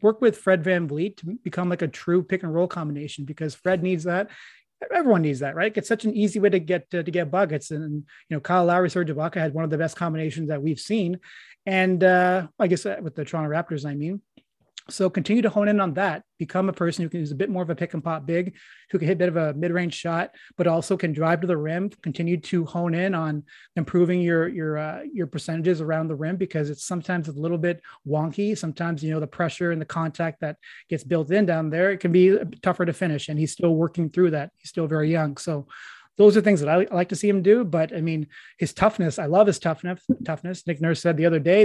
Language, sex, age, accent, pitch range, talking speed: English, male, 30-49, American, 160-190 Hz, 255 wpm